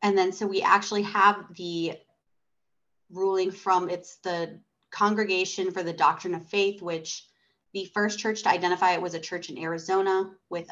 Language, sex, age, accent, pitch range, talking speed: English, female, 30-49, American, 170-200 Hz, 170 wpm